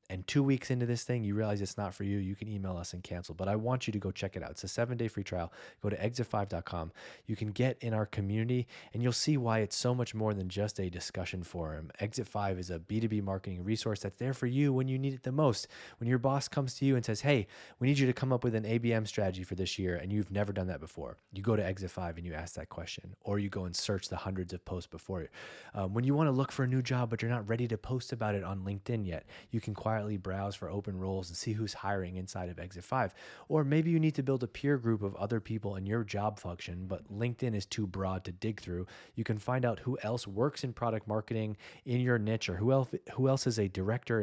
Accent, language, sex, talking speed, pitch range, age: American, English, male, 275 wpm, 95-125 Hz, 20-39